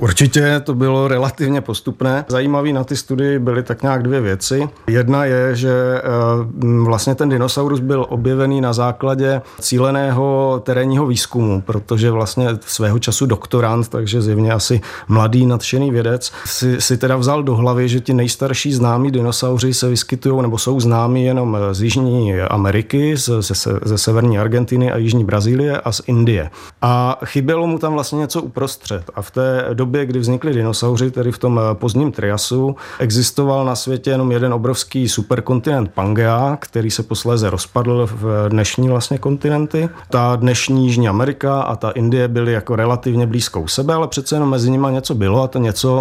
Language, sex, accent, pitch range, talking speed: Czech, male, native, 115-135 Hz, 165 wpm